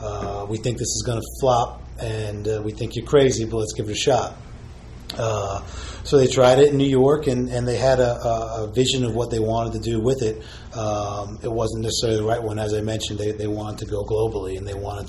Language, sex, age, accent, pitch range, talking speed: English, male, 30-49, American, 105-115 Hz, 245 wpm